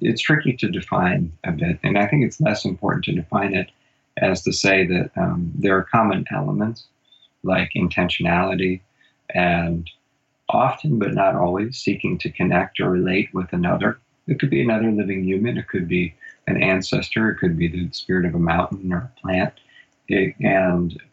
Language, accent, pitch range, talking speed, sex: English, American, 90-115 Hz, 175 wpm, male